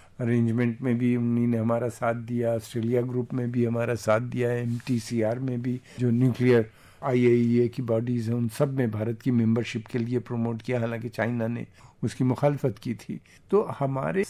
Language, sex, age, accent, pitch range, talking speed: English, male, 50-69, Indian, 115-130 Hz, 170 wpm